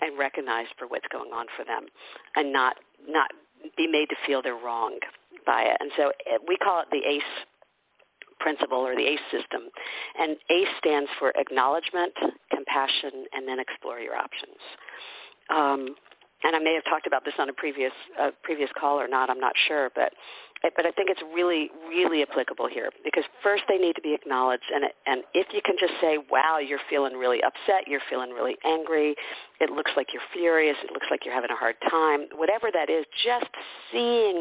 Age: 50-69